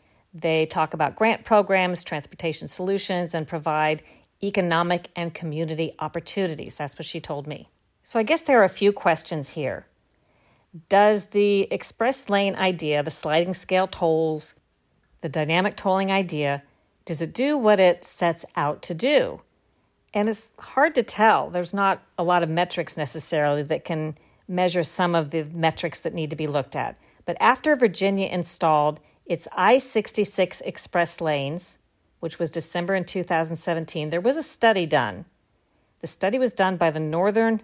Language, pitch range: English, 160-200 Hz